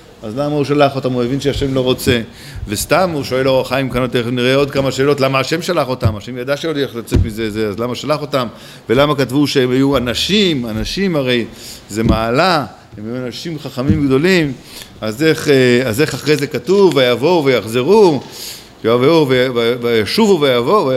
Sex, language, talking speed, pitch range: male, Hebrew, 175 wpm, 115-140 Hz